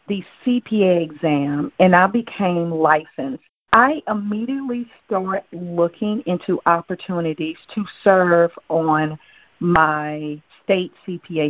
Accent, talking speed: American, 100 wpm